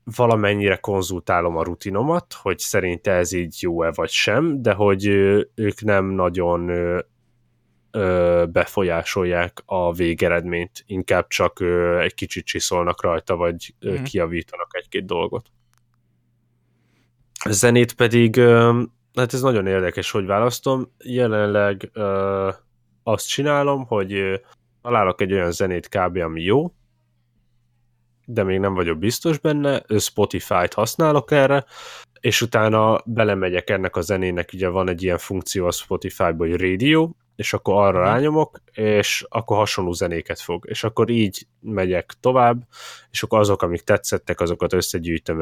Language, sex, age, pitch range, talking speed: Hungarian, male, 10-29, 90-120 Hz, 130 wpm